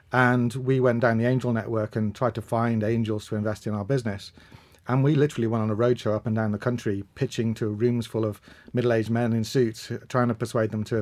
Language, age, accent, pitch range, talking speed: English, 40-59, British, 110-125 Hz, 245 wpm